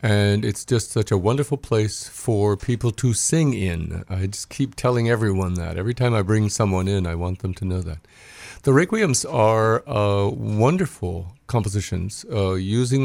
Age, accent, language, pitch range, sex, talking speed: 50-69, American, English, 90-115 Hz, male, 175 wpm